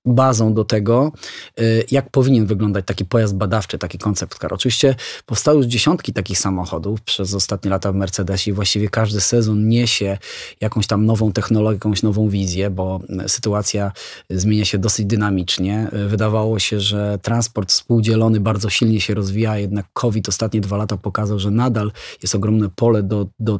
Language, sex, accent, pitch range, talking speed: Polish, male, native, 100-115 Hz, 160 wpm